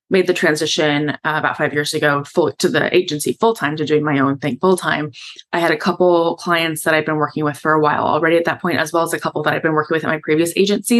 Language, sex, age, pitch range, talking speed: English, female, 20-39, 145-170 Hz, 285 wpm